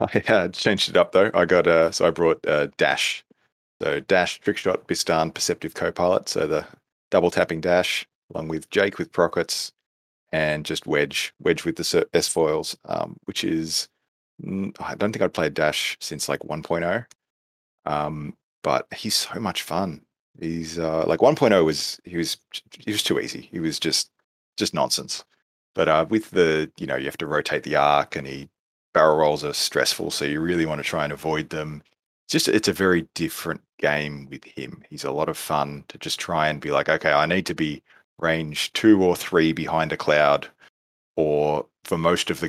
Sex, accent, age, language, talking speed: male, Australian, 30-49, English, 195 wpm